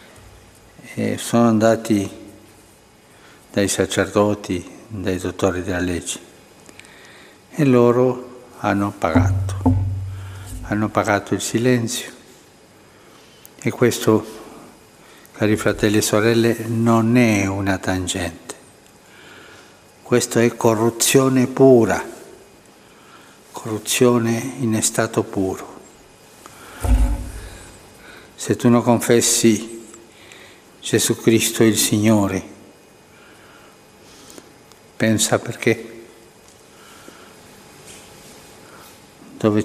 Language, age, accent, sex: Italian, 60-79, native, male